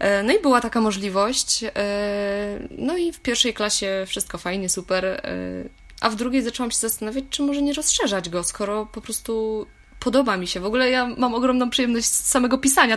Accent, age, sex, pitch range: native, 20-39, female, 185-235 Hz